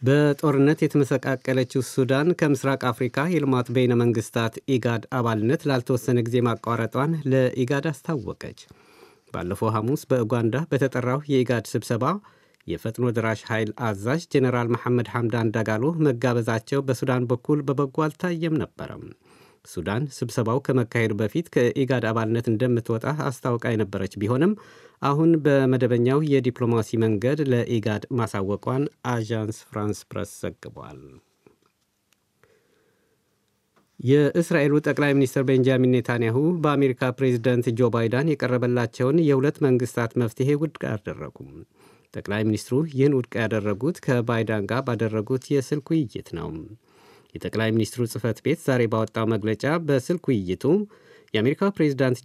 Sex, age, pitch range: male, 50-69, 115-140 Hz